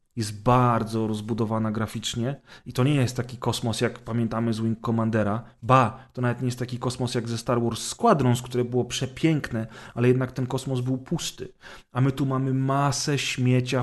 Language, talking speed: Polish, 180 wpm